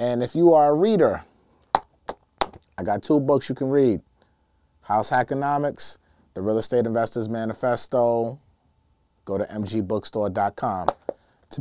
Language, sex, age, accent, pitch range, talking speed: English, male, 30-49, American, 105-130 Hz, 125 wpm